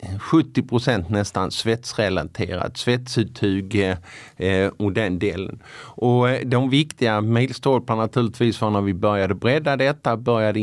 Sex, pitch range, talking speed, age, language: male, 100-120 Hz, 125 wpm, 50-69, Swedish